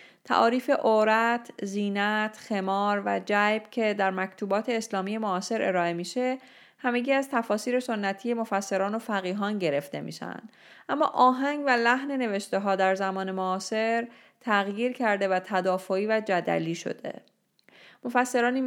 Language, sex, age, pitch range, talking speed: Persian, female, 30-49, 190-235 Hz, 125 wpm